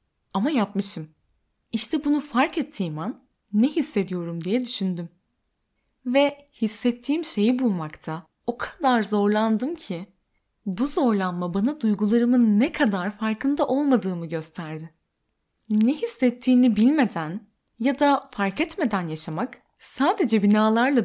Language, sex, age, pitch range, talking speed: Turkish, female, 10-29, 180-245 Hz, 110 wpm